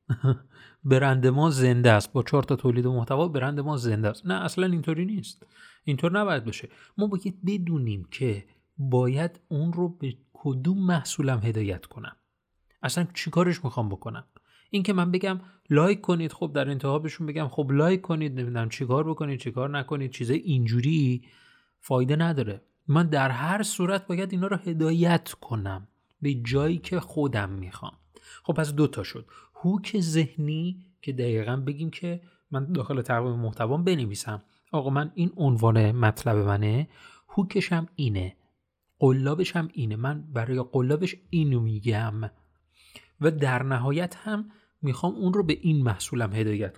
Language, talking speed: Persian, 145 wpm